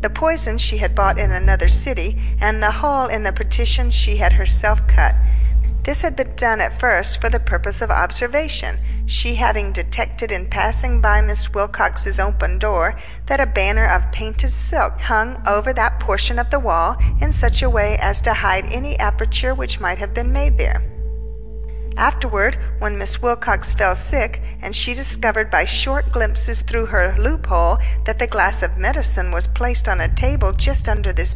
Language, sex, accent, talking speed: English, female, American, 180 wpm